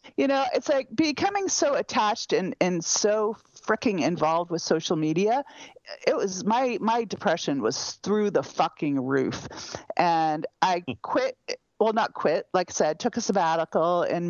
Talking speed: 160 wpm